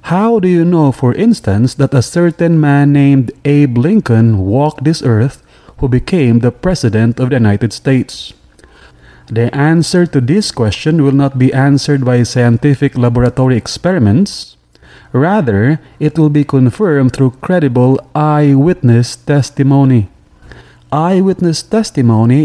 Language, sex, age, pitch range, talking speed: English, male, 30-49, 125-165 Hz, 130 wpm